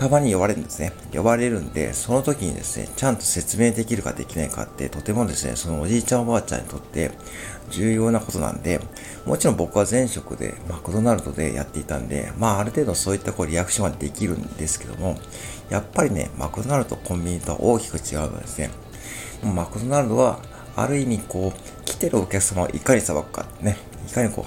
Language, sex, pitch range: Japanese, male, 80-110 Hz